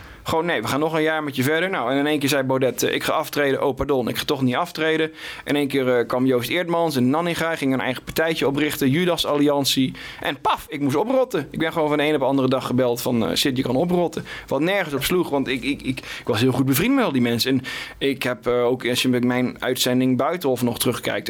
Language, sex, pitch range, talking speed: Dutch, male, 125-150 Hz, 270 wpm